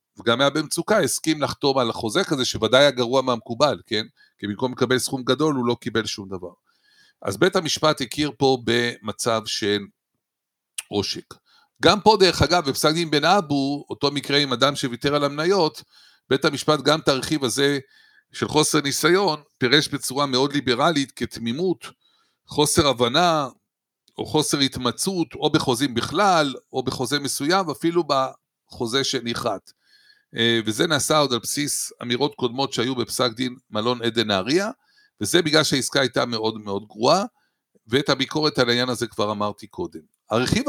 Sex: male